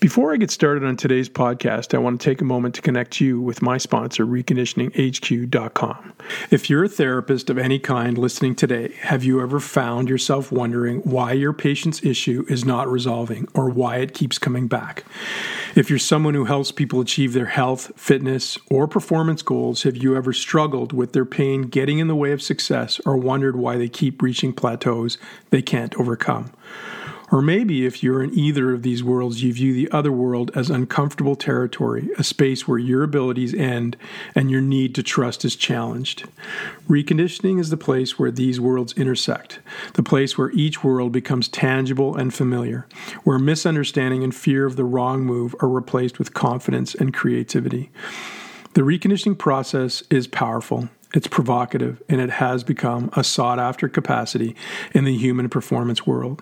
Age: 50-69